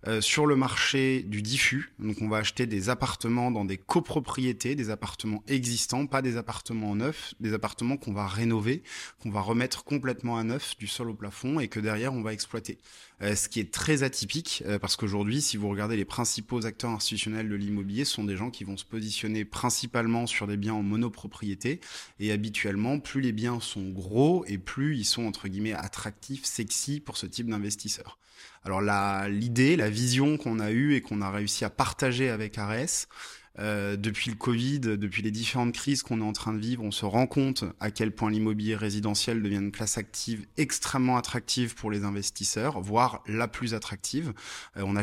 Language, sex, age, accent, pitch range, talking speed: French, male, 20-39, French, 105-125 Hz, 200 wpm